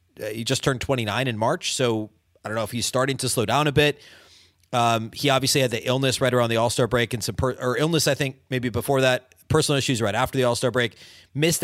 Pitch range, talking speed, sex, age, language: 115-140 Hz, 240 wpm, male, 30-49, English